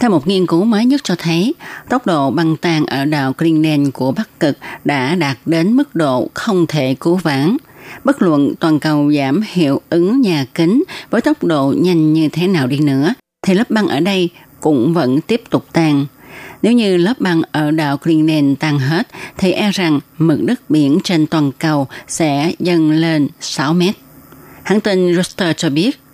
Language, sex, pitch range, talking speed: Vietnamese, female, 150-180 Hz, 190 wpm